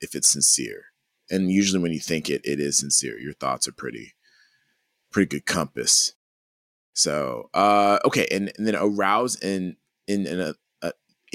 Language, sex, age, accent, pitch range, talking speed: English, male, 30-49, American, 75-100 Hz, 165 wpm